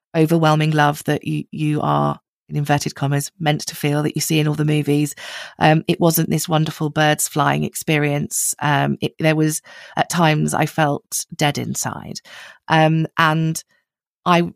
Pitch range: 150-180 Hz